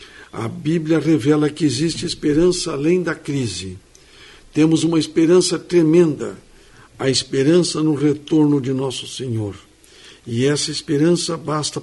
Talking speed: 120 wpm